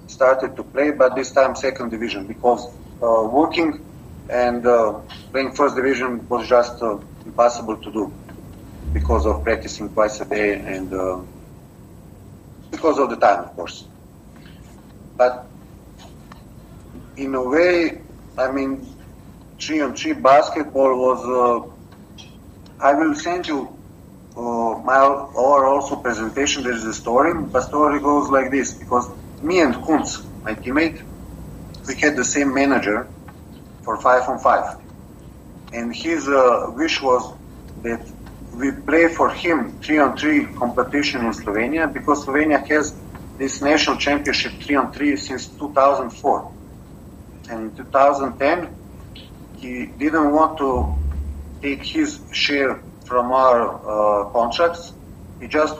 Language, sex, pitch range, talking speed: English, male, 105-140 Hz, 125 wpm